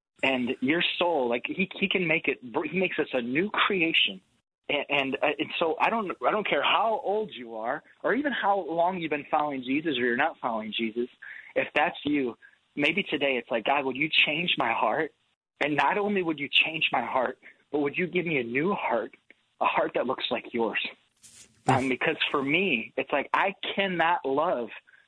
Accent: American